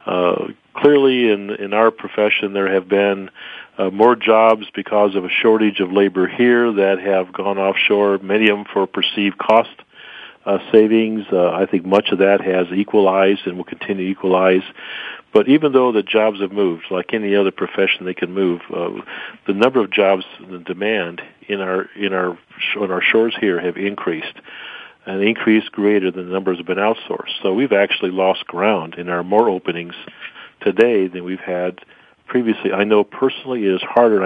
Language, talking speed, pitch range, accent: English, 185 wpm, 95-110 Hz, American